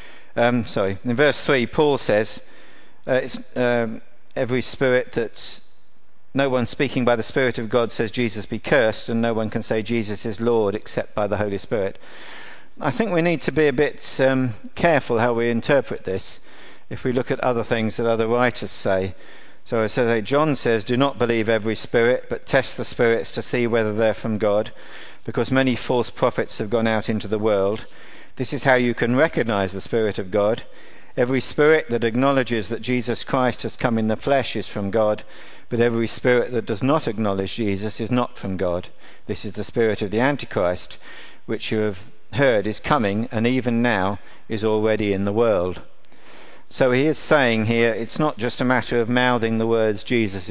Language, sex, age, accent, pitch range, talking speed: English, male, 50-69, British, 110-125 Hz, 195 wpm